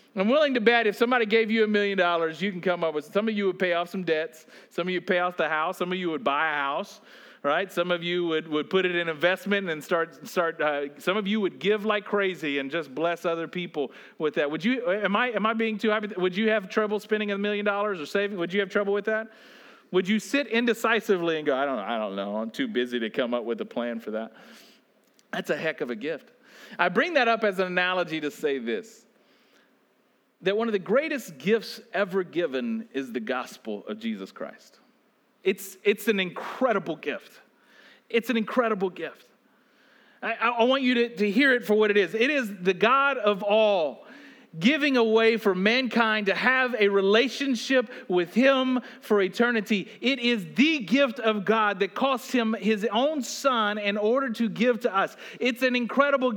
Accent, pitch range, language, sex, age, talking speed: American, 185-240 Hz, English, male, 40-59, 215 wpm